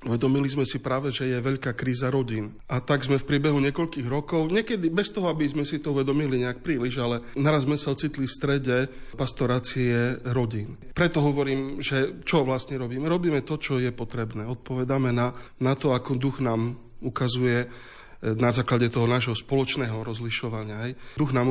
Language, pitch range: Slovak, 120-135 Hz